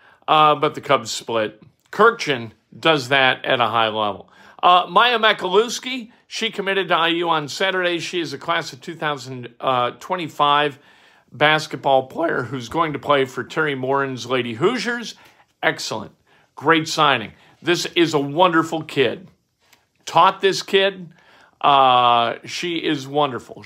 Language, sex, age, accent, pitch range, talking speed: English, male, 50-69, American, 135-175 Hz, 135 wpm